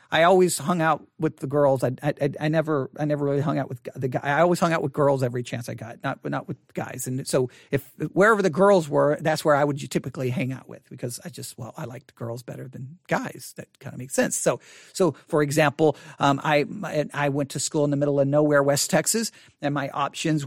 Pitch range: 140-175 Hz